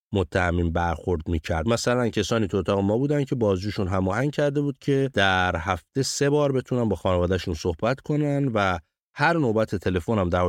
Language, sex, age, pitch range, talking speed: Persian, male, 30-49, 90-120 Hz, 170 wpm